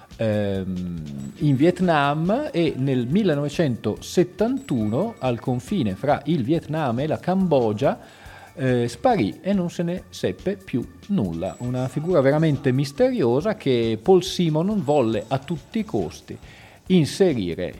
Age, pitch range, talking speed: 40-59, 105-145 Hz, 120 wpm